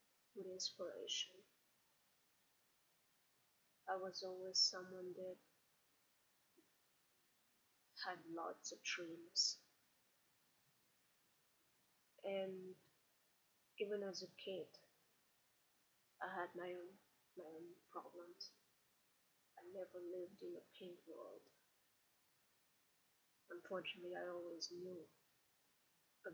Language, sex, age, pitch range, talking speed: English, female, 30-49, 175-190 Hz, 80 wpm